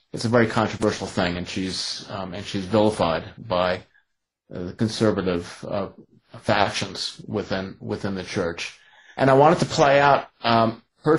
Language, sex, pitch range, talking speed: English, male, 100-120 Hz, 155 wpm